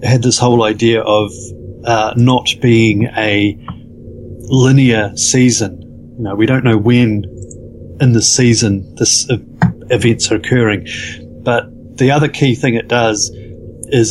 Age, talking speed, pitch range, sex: 30-49, 140 wpm, 110-125 Hz, male